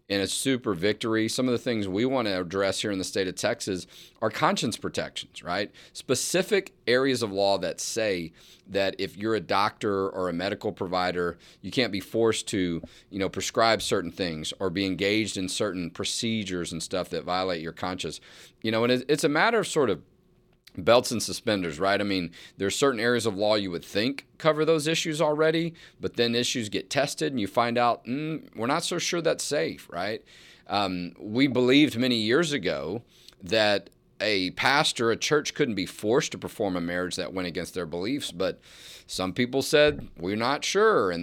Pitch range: 95-130 Hz